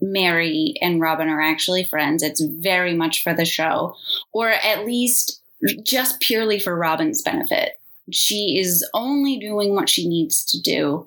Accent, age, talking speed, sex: American, 20-39, 155 wpm, female